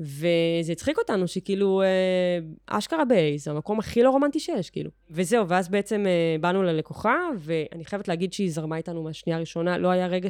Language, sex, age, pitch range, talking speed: Hebrew, female, 20-39, 165-205 Hz, 170 wpm